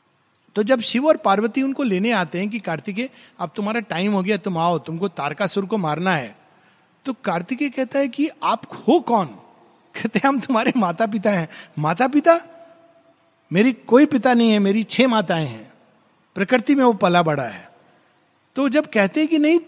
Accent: native